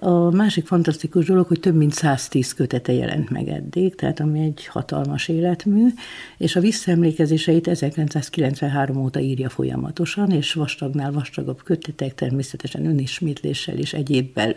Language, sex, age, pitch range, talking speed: Hungarian, female, 60-79, 145-180 Hz, 130 wpm